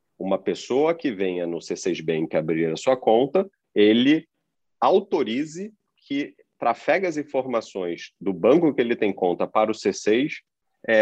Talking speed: 145 wpm